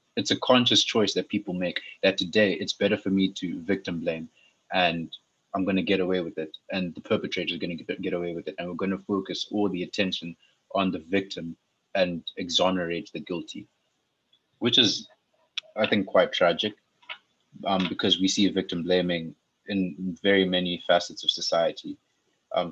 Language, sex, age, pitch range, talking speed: English, male, 20-39, 85-95 Hz, 180 wpm